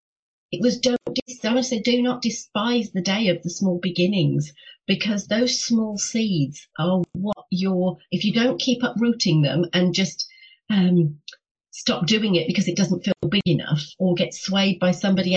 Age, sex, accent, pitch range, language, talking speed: 40-59, female, British, 170-205 Hz, English, 175 wpm